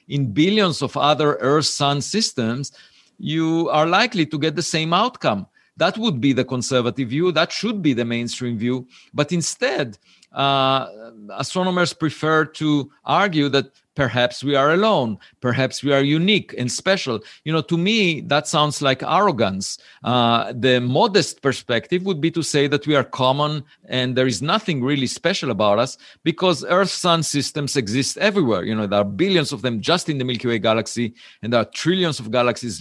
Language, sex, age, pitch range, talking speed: English, male, 50-69, 120-160 Hz, 175 wpm